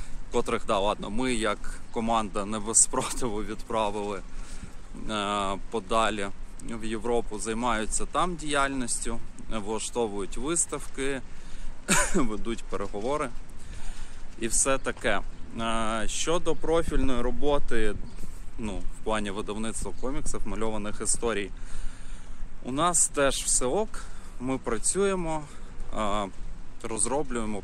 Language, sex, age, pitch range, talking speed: Ukrainian, male, 20-39, 95-125 Hz, 90 wpm